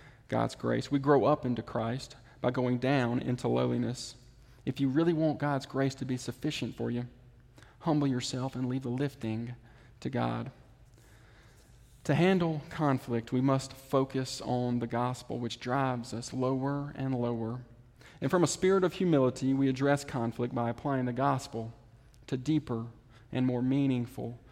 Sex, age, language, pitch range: male, 40-59, English, 115-135 Hz